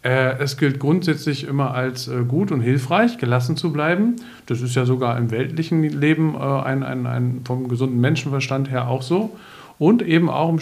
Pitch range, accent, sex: 125-155 Hz, German, male